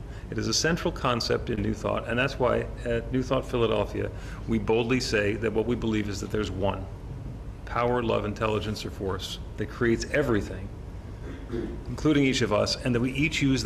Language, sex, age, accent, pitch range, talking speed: English, male, 40-59, American, 100-120 Hz, 190 wpm